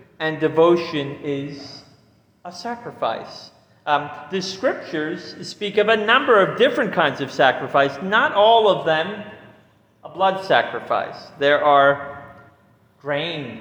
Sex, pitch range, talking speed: male, 140-190 Hz, 120 wpm